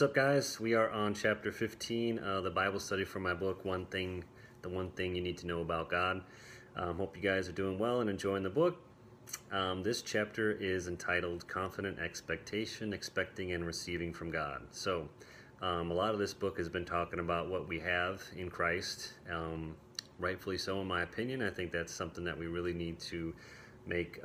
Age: 30-49